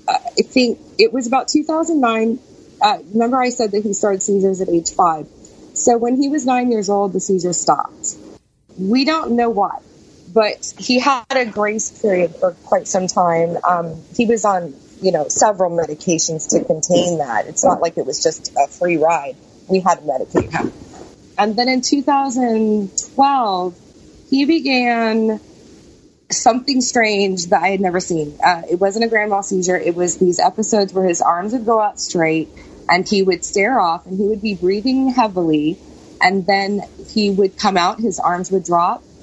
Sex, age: female, 30-49